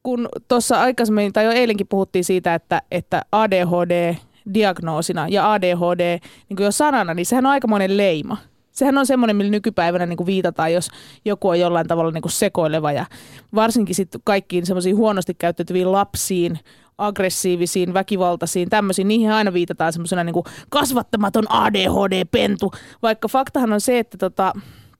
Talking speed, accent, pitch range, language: 140 wpm, native, 175-230 Hz, Finnish